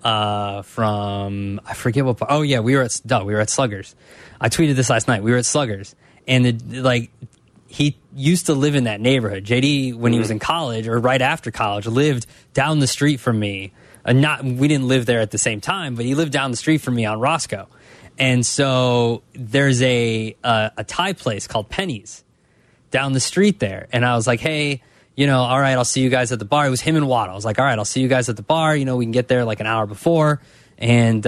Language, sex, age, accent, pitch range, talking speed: English, male, 20-39, American, 120-160 Hz, 245 wpm